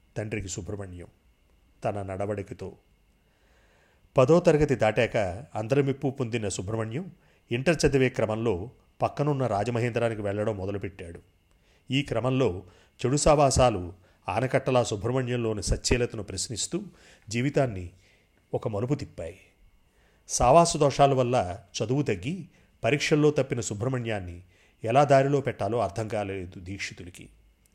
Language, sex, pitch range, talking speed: Telugu, male, 100-135 Hz, 95 wpm